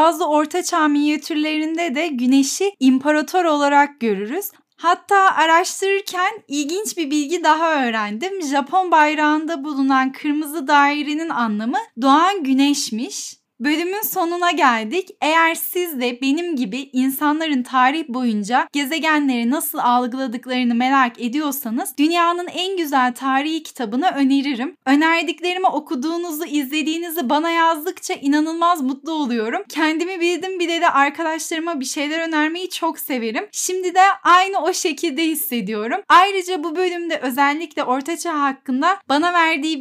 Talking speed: 120 wpm